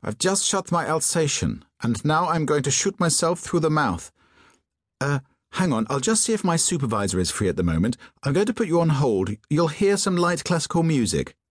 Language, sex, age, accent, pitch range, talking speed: English, male, 40-59, British, 100-150 Hz, 220 wpm